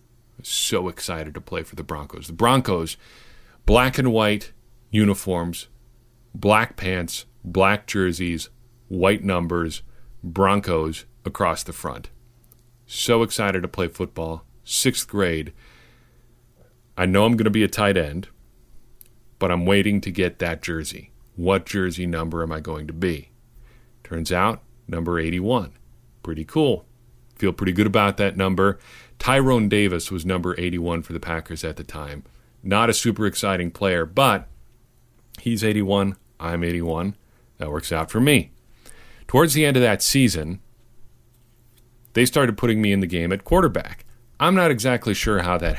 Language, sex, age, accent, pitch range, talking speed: English, male, 40-59, American, 90-120 Hz, 150 wpm